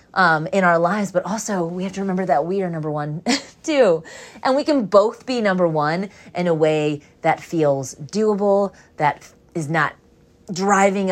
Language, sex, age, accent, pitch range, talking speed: English, female, 30-49, American, 160-215 Hz, 180 wpm